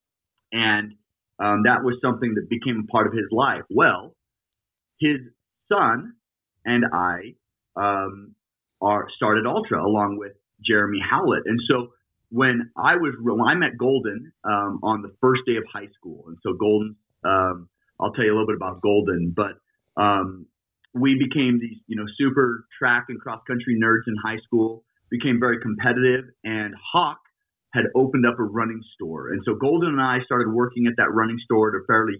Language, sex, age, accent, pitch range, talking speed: English, male, 30-49, American, 105-125 Hz, 175 wpm